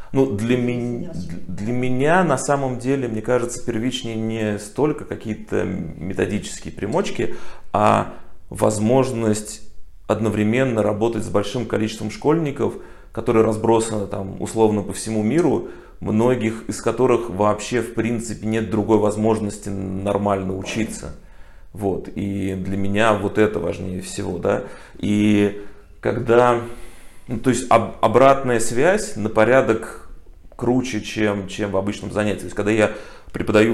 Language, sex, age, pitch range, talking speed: Russian, male, 30-49, 100-120 Hz, 125 wpm